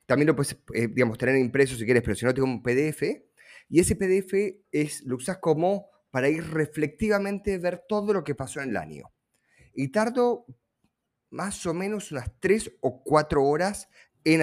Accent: Argentinian